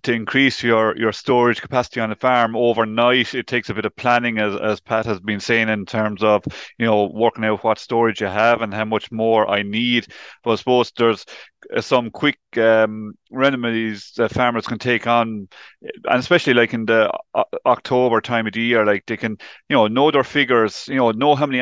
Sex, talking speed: male, 210 wpm